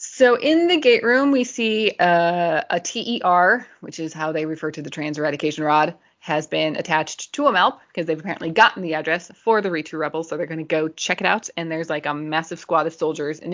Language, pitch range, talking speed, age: English, 155-195 Hz, 235 wpm, 20-39